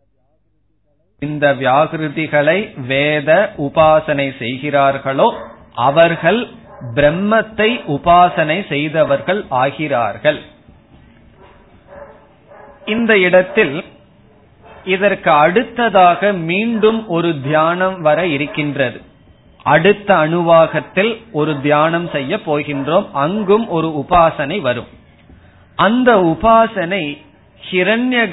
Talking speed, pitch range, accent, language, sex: 65 wpm, 150-200 Hz, native, Tamil, male